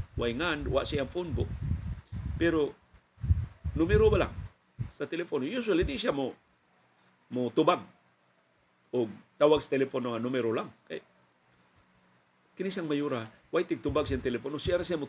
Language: Filipino